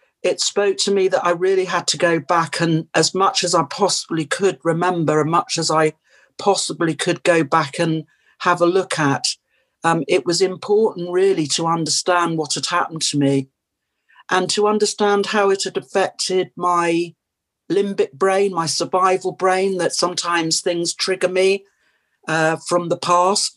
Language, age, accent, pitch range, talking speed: English, 50-69, British, 160-190 Hz, 170 wpm